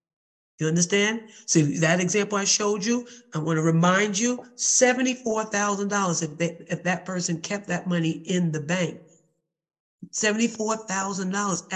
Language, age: English, 40-59